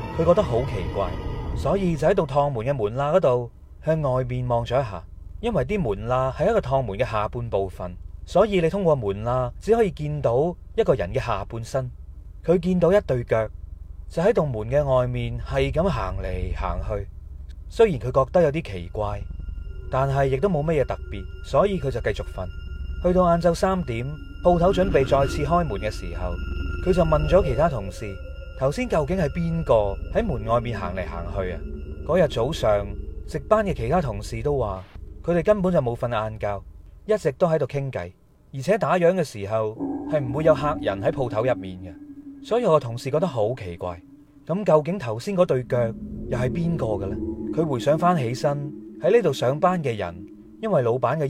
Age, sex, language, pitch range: 30-49, male, Chinese, 100-165 Hz